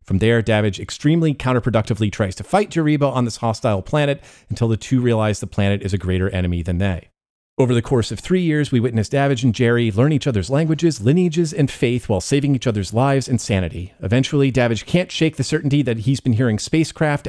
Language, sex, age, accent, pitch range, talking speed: English, male, 30-49, American, 105-140 Hz, 210 wpm